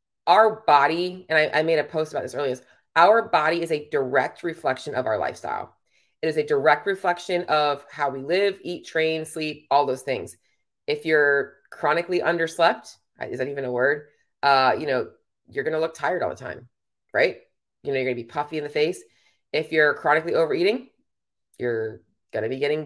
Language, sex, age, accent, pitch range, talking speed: English, female, 20-39, American, 145-185 Hz, 190 wpm